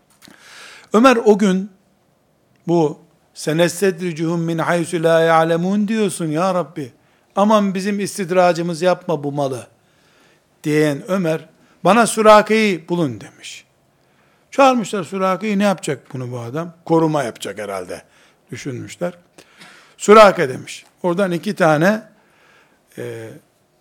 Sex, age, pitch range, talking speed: male, 60-79, 150-195 Hz, 105 wpm